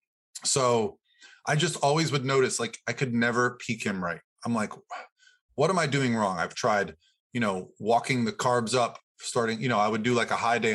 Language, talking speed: English, 210 wpm